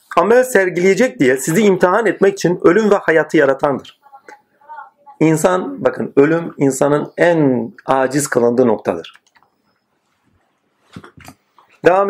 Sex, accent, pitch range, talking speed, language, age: male, native, 155-215 Hz, 100 wpm, Turkish, 40-59